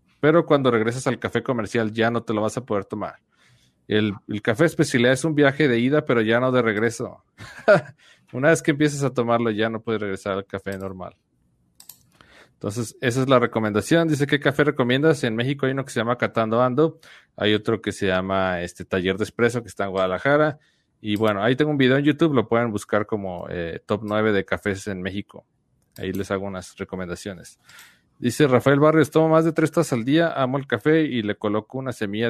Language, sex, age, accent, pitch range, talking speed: Spanish, male, 40-59, Mexican, 100-135 Hz, 210 wpm